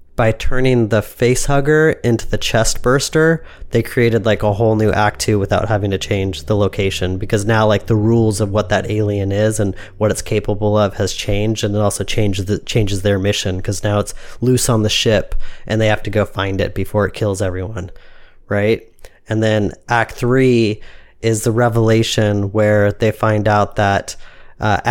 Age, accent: 30-49, American